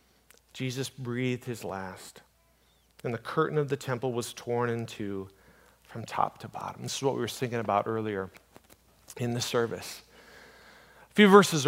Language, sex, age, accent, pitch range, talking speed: English, male, 40-59, American, 115-155 Hz, 165 wpm